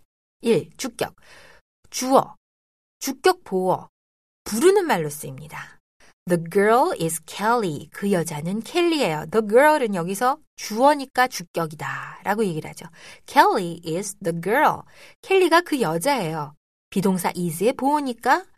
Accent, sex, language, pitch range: native, female, Korean, 165-255 Hz